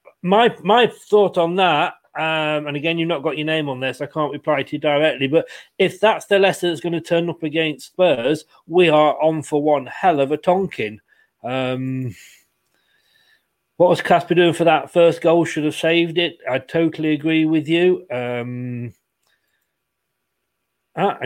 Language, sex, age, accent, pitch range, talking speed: English, male, 40-59, British, 140-170 Hz, 175 wpm